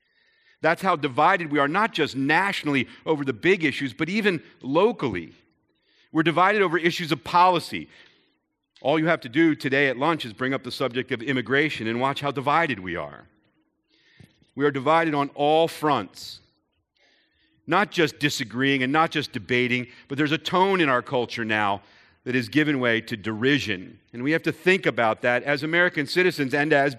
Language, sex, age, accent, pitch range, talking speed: English, male, 50-69, American, 115-155 Hz, 180 wpm